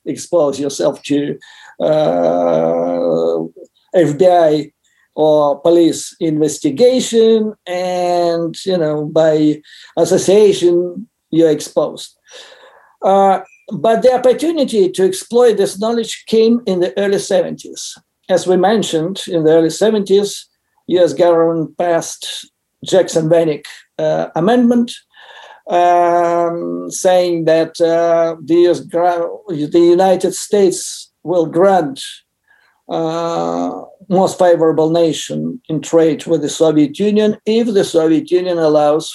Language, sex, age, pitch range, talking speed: English, male, 50-69, 160-215 Hz, 100 wpm